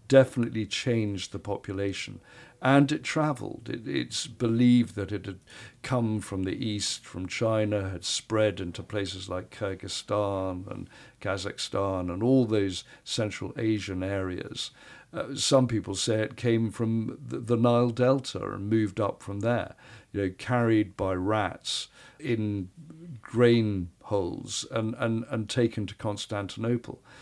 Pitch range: 100-120 Hz